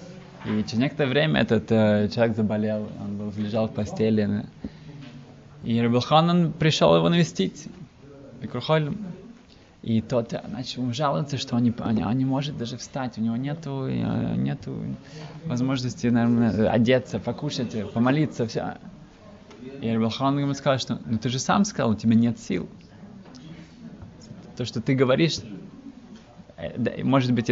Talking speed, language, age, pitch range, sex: 135 wpm, Russian, 20-39, 110-140 Hz, male